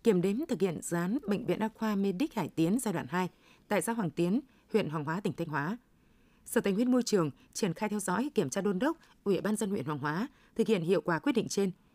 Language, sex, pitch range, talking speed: Vietnamese, female, 185-235 Hz, 255 wpm